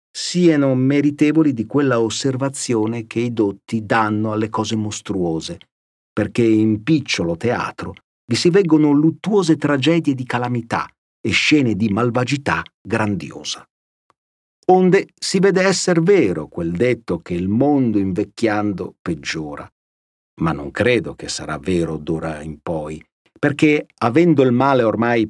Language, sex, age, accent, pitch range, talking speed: Italian, male, 50-69, native, 105-150 Hz, 130 wpm